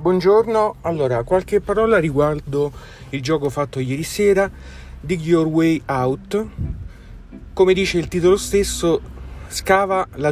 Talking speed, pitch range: 120 wpm, 120-160 Hz